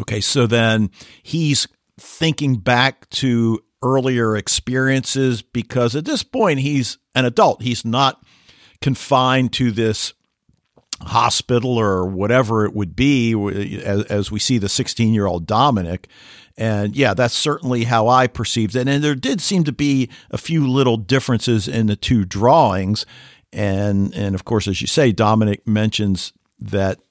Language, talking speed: English, 145 wpm